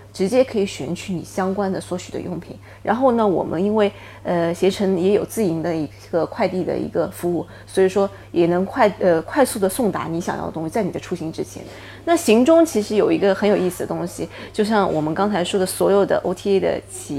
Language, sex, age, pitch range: Chinese, female, 20-39, 175-210 Hz